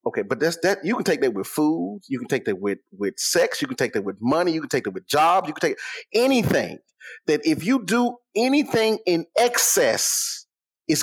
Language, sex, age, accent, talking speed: English, male, 30-49, American, 225 wpm